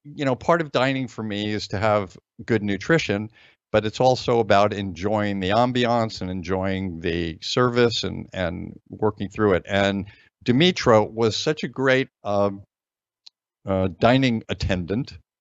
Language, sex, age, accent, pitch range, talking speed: English, male, 50-69, American, 100-120 Hz, 150 wpm